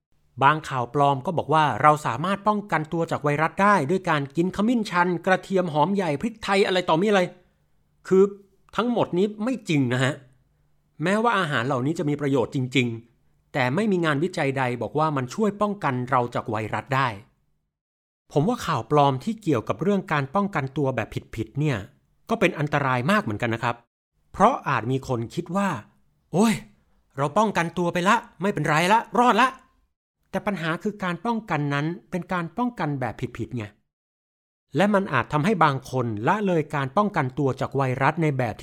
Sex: male